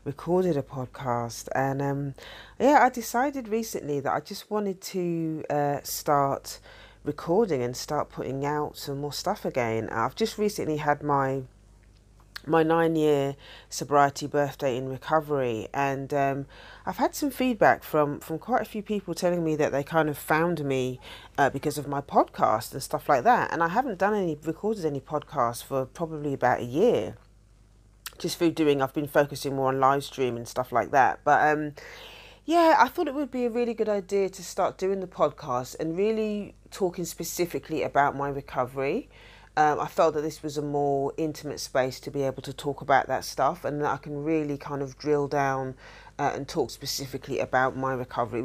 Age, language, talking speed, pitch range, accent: 40-59, English, 185 wpm, 135-170 Hz, British